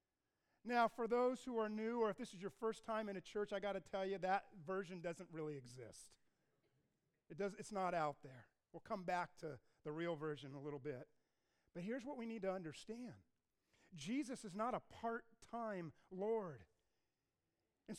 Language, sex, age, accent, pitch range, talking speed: English, male, 40-59, American, 195-255 Hz, 190 wpm